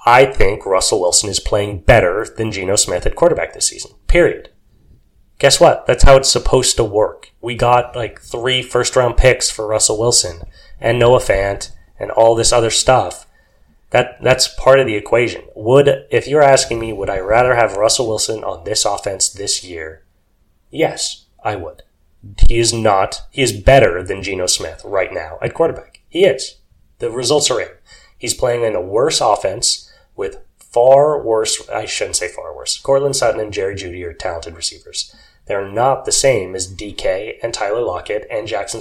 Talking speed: 180 wpm